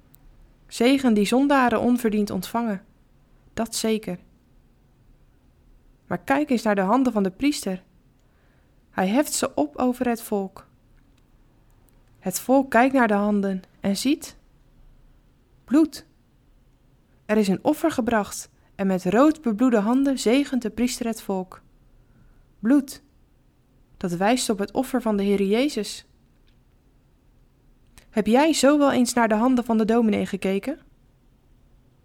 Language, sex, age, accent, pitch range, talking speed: Dutch, female, 20-39, Dutch, 195-255 Hz, 130 wpm